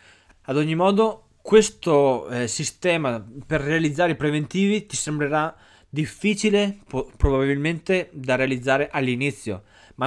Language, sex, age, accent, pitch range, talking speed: Italian, male, 20-39, native, 130-185 Hz, 105 wpm